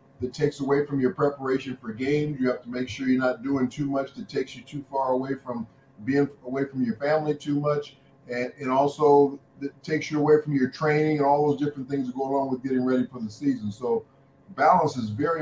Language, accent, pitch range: English, American, 130-150 Hz